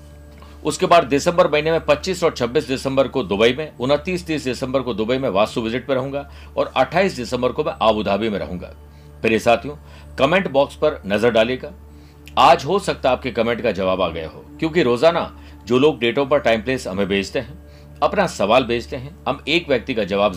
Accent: native